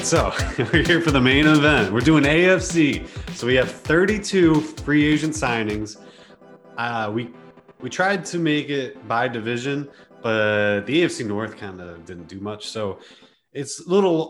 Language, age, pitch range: English, 20-39, 100-130 Hz